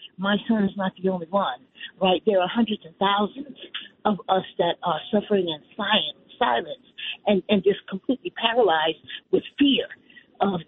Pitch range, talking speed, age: 200-290 Hz, 165 wpm, 40-59